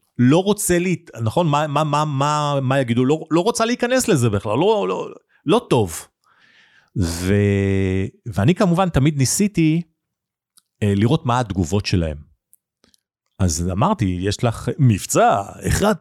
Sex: male